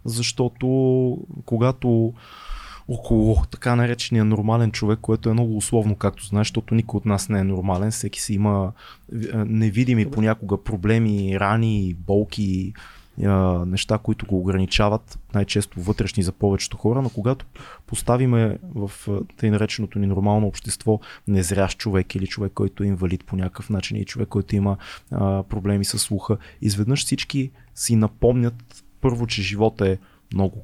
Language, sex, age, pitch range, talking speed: Bulgarian, male, 20-39, 100-120 Hz, 140 wpm